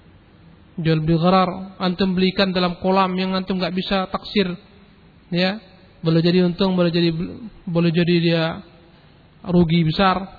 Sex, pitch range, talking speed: male, 180-225 Hz, 125 wpm